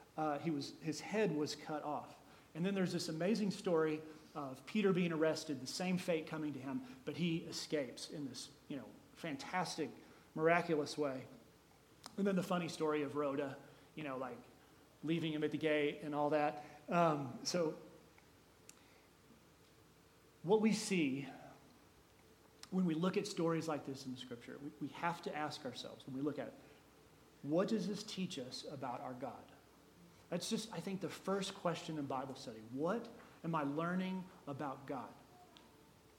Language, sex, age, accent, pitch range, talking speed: English, male, 40-59, American, 150-180 Hz, 170 wpm